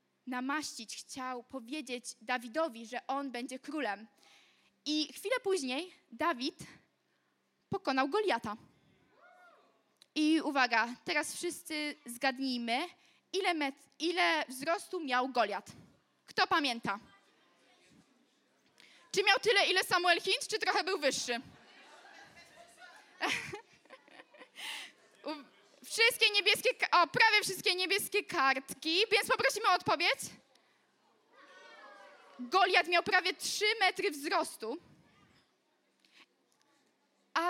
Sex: female